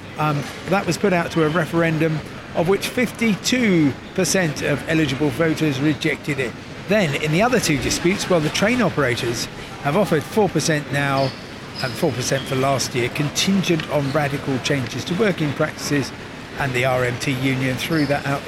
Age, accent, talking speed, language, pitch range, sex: 50-69, British, 160 wpm, English, 135-170 Hz, male